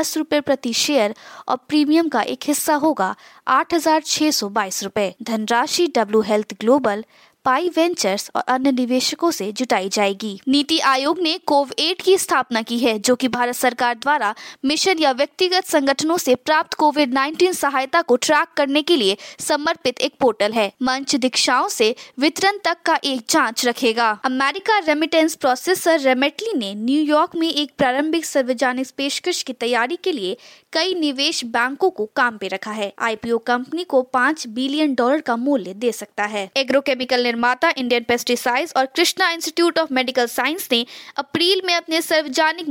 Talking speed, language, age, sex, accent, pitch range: 110 wpm, English, 20-39, female, Indian, 255-335 Hz